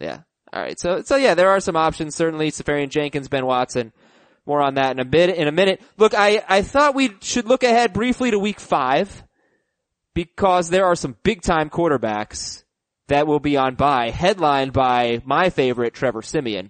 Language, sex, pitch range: English, male, 130-180 Hz